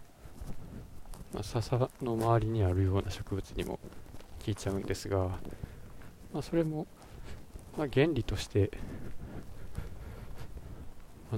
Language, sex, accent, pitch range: Japanese, male, native, 90-115 Hz